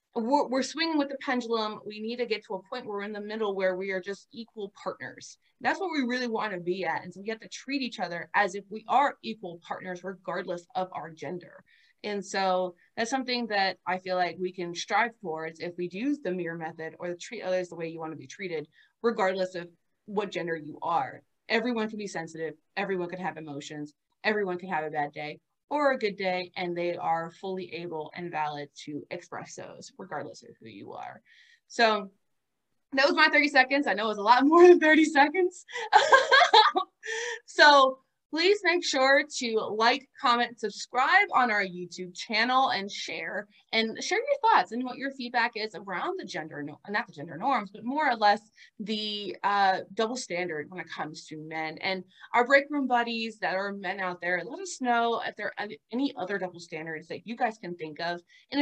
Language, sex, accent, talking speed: English, female, American, 210 wpm